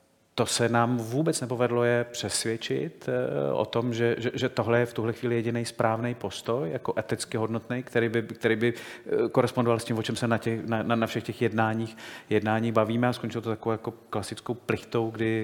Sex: male